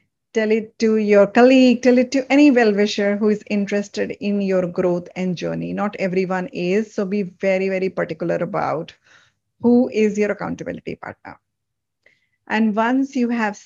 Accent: Indian